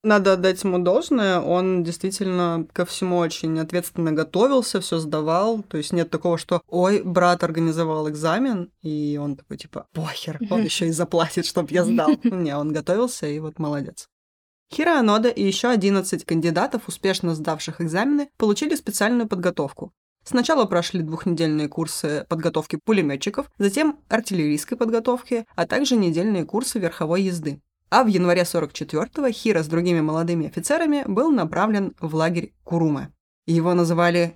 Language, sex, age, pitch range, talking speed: Russian, female, 20-39, 160-210 Hz, 145 wpm